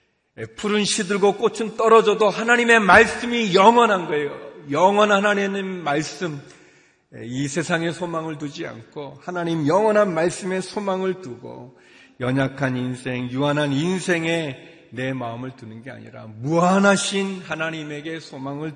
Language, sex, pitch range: Korean, male, 115-160 Hz